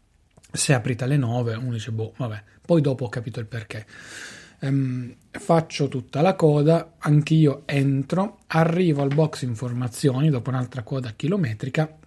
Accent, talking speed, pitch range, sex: native, 145 wpm, 125-155 Hz, male